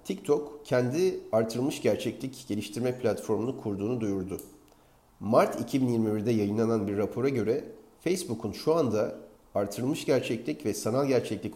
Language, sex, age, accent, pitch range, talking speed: Turkish, male, 40-59, native, 105-140 Hz, 115 wpm